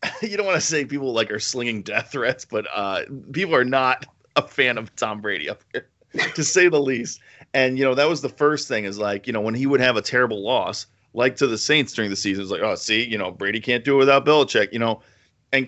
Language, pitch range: English, 110-150 Hz